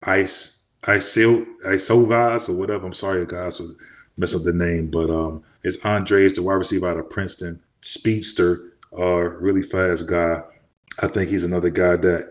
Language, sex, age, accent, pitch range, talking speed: English, male, 20-39, American, 85-100 Hz, 175 wpm